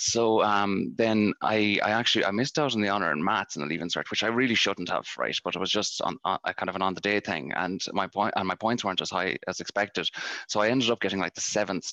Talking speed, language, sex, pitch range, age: 285 wpm, English, male, 90-110 Hz, 30-49